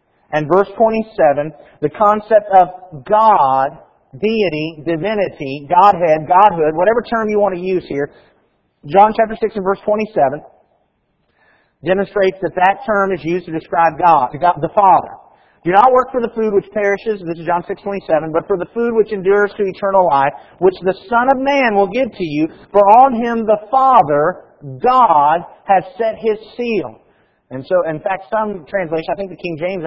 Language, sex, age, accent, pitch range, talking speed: English, male, 50-69, American, 160-210 Hz, 175 wpm